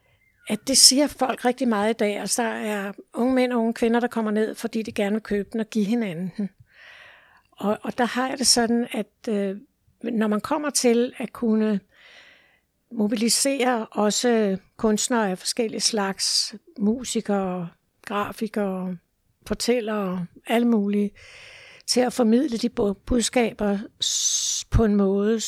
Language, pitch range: Danish, 200-245 Hz